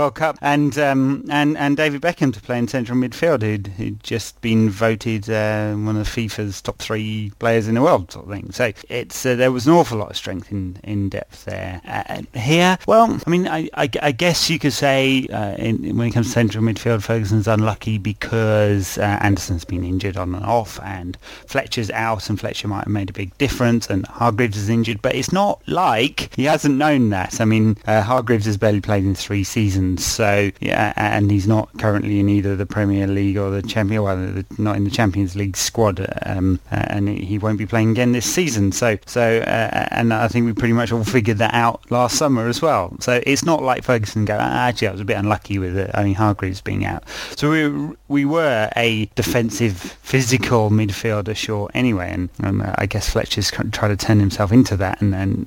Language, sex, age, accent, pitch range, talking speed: English, male, 30-49, British, 100-120 Hz, 215 wpm